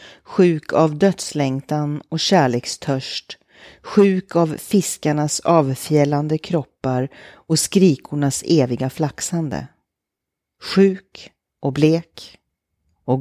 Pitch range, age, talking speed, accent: 130-165 Hz, 40-59, 80 wpm, native